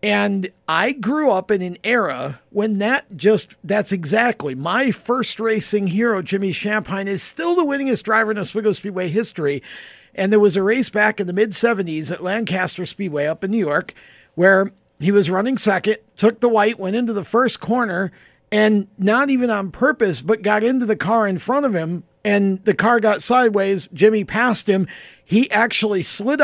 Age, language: 50-69, English